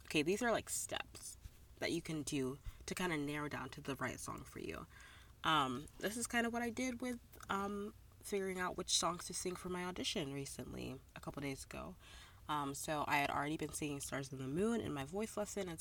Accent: American